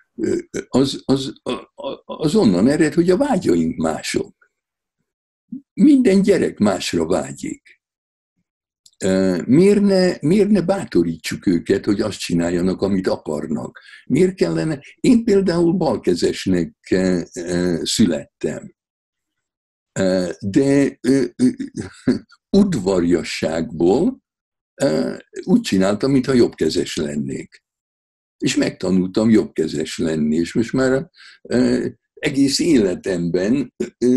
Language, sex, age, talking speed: Hungarian, male, 60-79, 80 wpm